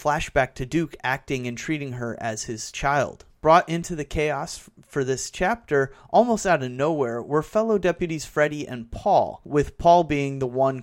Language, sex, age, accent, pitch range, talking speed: English, male, 30-49, American, 130-175 Hz, 185 wpm